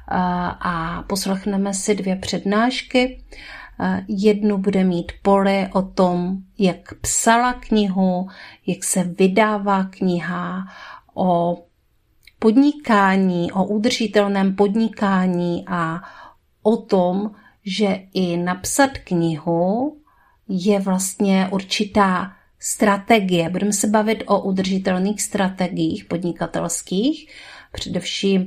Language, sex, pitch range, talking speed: Czech, female, 185-215 Hz, 90 wpm